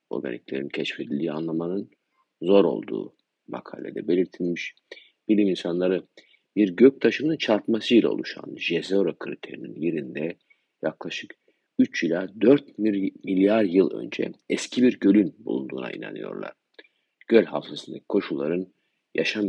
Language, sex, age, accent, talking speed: Turkish, male, 50-69, native, 100 wpm